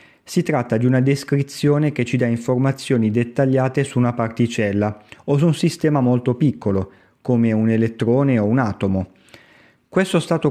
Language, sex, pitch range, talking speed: Italian, male, 115-140 Hz, 155 wpm